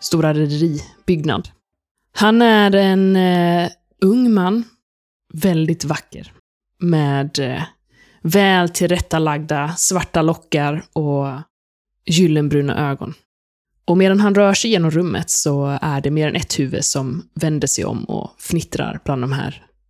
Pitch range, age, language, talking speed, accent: 145-180 Hz, 20-39, Swedish, 125 wpm, native